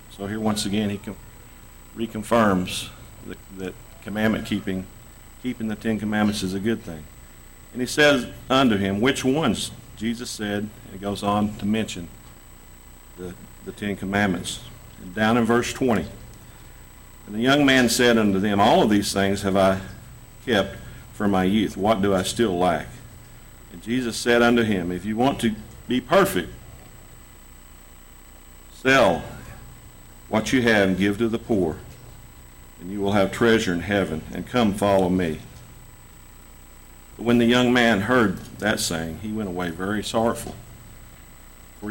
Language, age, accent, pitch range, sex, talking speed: English, 50-69, American, 90-115 Hz, male, 155 wpm